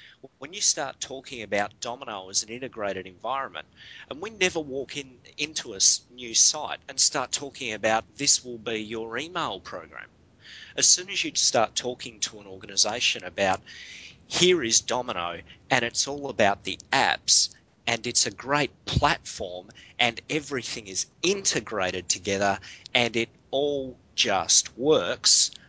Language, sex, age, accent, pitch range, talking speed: English, male, 30-49, Australian, 100-140 Hz, 145 wpm